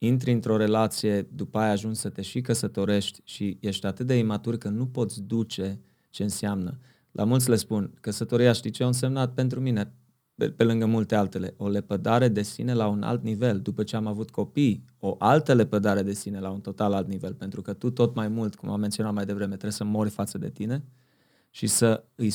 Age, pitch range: 20-39, 100-115 Hz